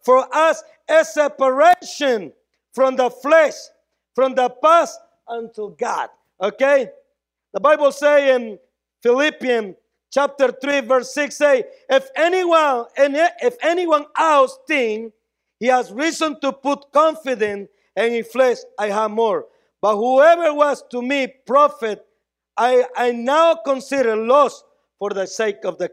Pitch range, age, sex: 210-280 Hz, 50-69, male